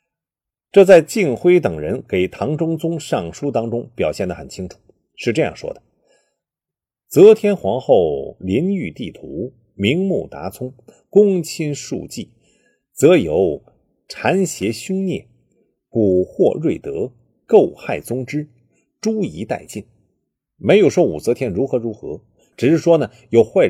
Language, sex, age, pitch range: Chinese, male, 50-69, 125-190 Hz